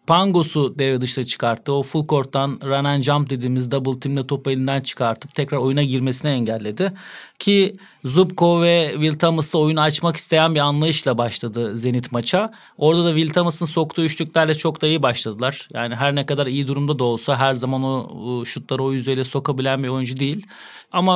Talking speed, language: 180 wpm, Turkish